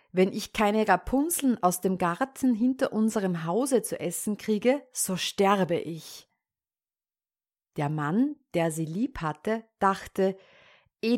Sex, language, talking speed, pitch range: female, German, 130 wpm, 170-230 Hz